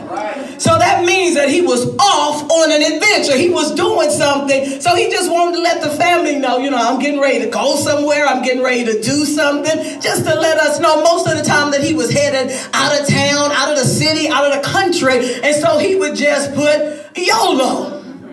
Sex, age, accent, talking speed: female, 40-59, American, 225 wpm